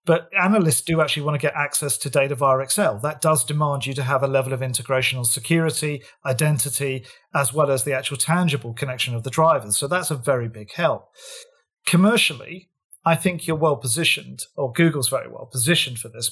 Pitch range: 130-165 Hz